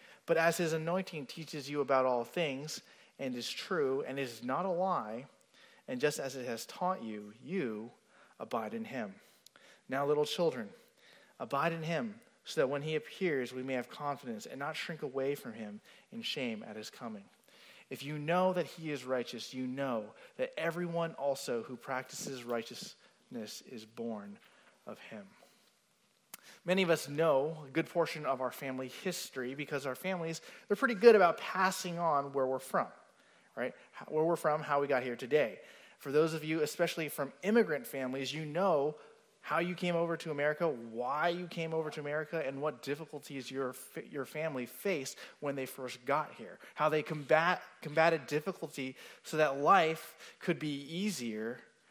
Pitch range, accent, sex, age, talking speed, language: 135-175 Hz, American, male, 30-49, 175 wpm, English